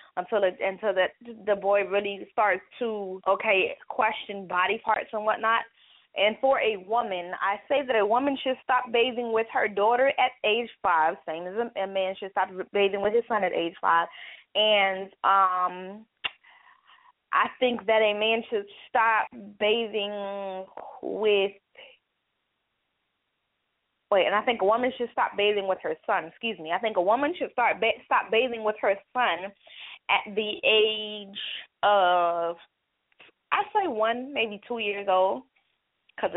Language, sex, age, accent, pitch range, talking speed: English, female, 20-39, American, 195-235 Hz, 160 wpm